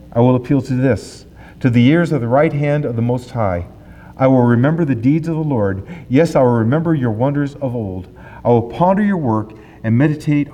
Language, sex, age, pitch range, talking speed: English, male, 50-69, 105-150 Hz, 220 wpm